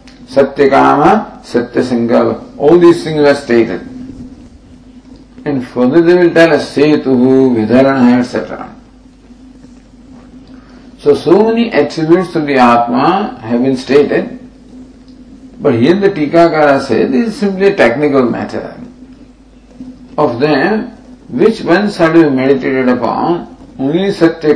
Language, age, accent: English, 50-69, Indian